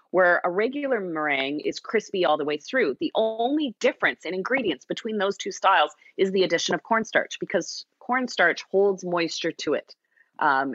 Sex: female